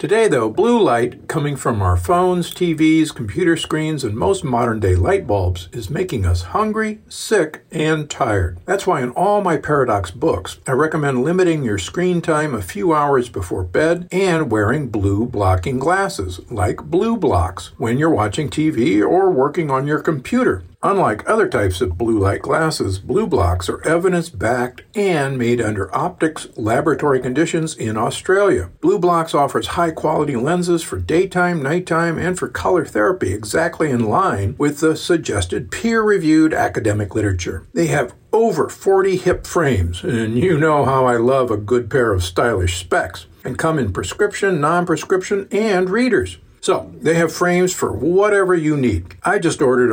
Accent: American